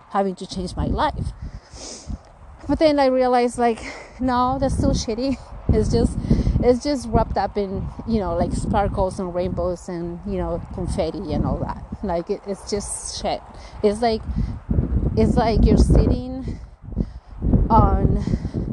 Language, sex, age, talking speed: English, female, 30-49, 145 wpm